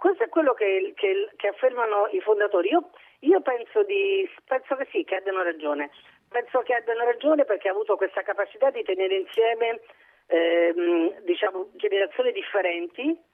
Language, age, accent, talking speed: Italian, 40-59, native, 160 wpm